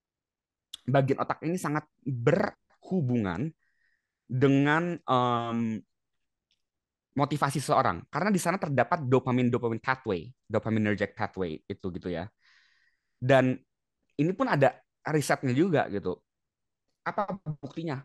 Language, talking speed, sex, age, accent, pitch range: Indonesian, 100 wpm, male, 20-39, native, 105-155 Hz